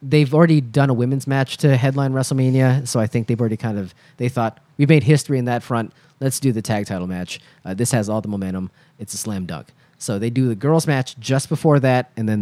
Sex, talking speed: male, 245 wpm